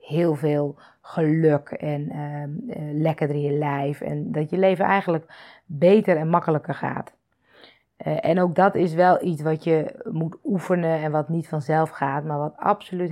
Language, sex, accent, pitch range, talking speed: Dutch, female, Dutch, 160-195 Hz, 170 wpm